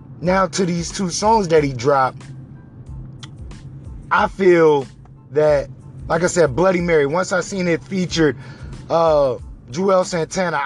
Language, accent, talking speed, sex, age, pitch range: English, American, 135 wpm, male, 30-49, 135-185 Hz